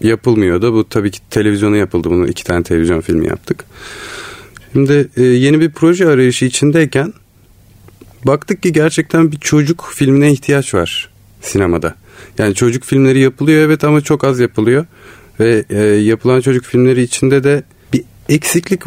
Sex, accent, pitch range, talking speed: male, native, 100-145 Hz, 145 wpm